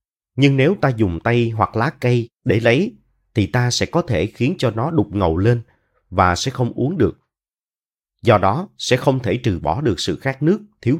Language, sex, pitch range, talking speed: Vietnamese, male, 95-140 Hz, 205 wpm